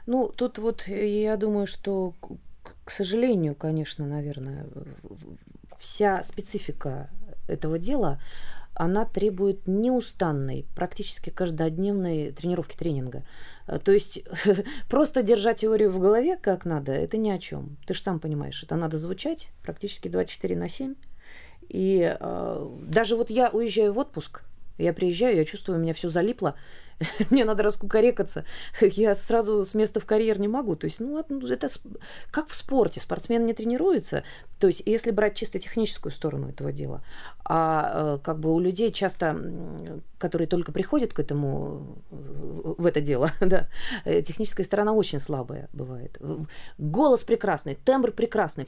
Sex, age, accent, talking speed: female, 30-49, native, 145 wpm